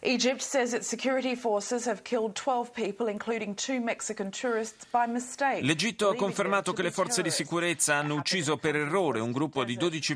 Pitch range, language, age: 115-155 Hz, Italian, 30-49